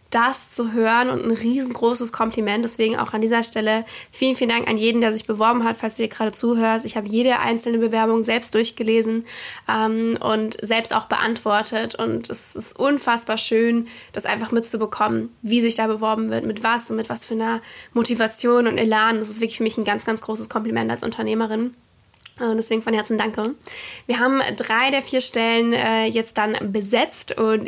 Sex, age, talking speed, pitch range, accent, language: female, 10-29, 195 wpm, 220-240 Hz, German, German